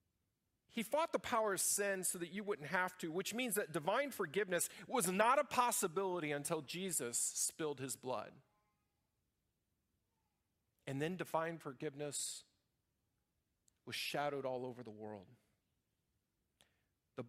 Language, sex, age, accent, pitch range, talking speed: English, male, 40-59, American, 115-175 Hz, 130 wpm